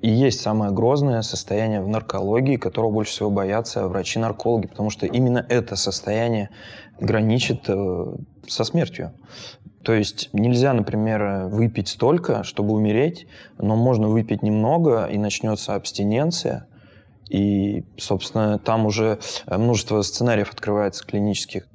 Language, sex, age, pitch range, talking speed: Russian, male, 20-39, 100-115 Hz, 120 wpm